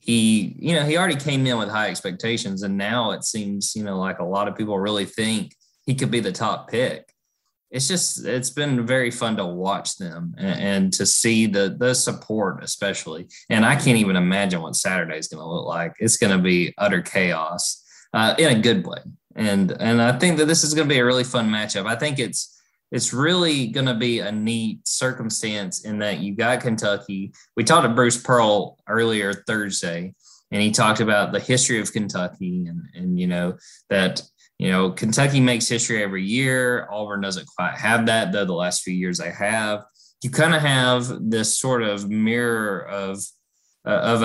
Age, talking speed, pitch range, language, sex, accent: 20-39, 200 wpm, 100-125 Hz, English, male, American